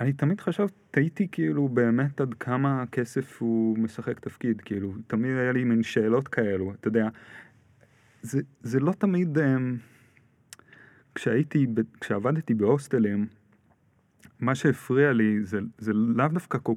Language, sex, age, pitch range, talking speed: Hebrew, male, 30-49, 110-140 Hz, 125 wpm